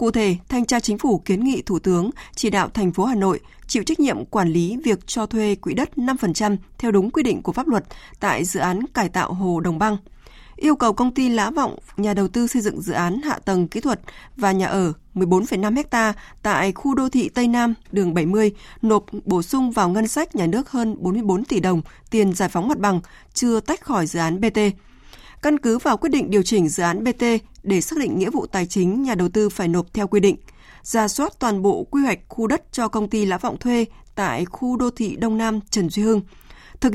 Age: 20-39